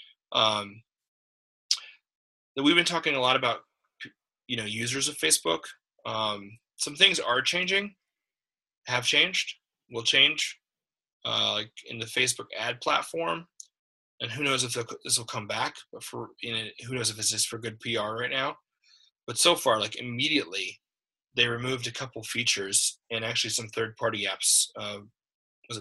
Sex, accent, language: male, American, English